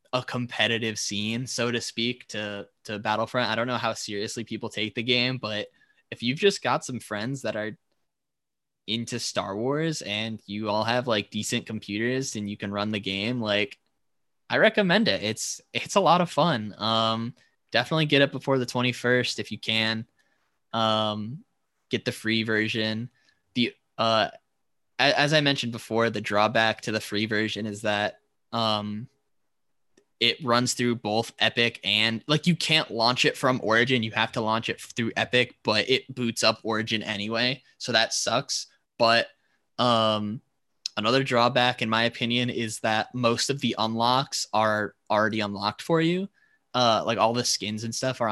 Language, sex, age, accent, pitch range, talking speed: English, male, 10-29, American, 110-130 Hz, 175 wpm